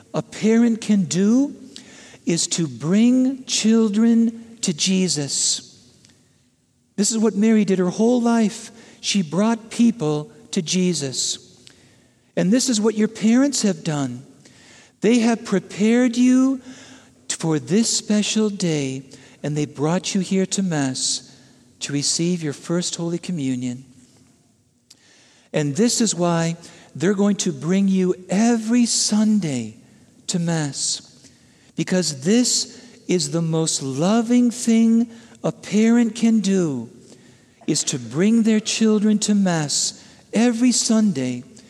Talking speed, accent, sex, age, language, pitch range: 120 wpm, American, male, 50-69, English, 145-220 Hz